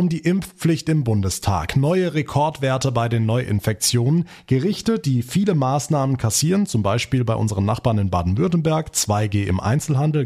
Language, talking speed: German, 140 wpm